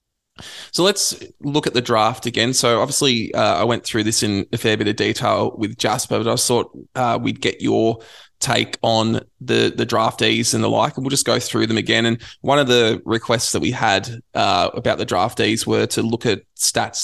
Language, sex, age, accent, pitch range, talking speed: English, male, 20-39, Australian, 105-125 Hz, 215 wpm